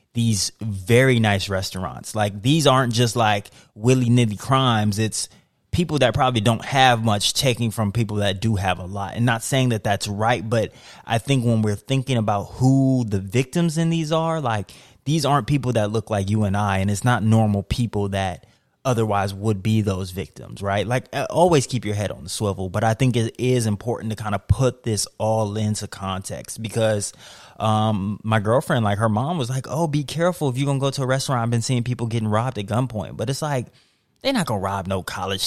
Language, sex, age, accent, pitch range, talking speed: English, male, 20-39, American, 100-125 Hz, 215 wpm